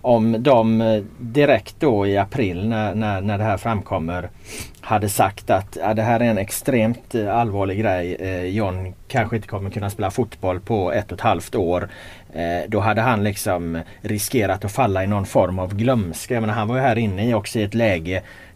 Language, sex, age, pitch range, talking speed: Swedish, male, 30-49, 95-115 Hz, 190 wpm